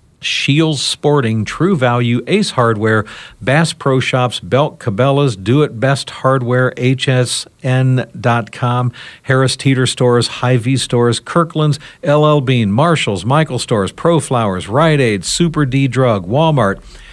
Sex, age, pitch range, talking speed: male, 60-79, 115-145 Hz, 125 wpm